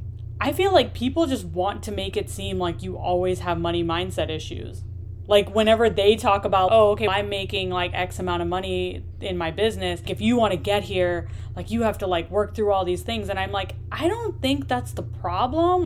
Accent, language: American, English